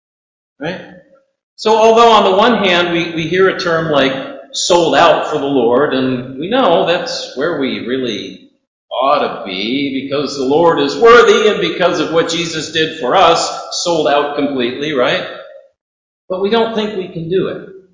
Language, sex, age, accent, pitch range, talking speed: English, male, 50-69, American, 140-190 Hz, 175 wpm